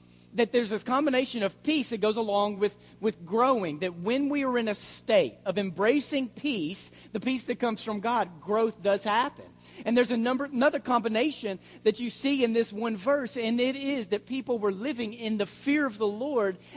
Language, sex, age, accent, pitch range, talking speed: English, male, 40-59, American, 200-260 Hz, 205 wpm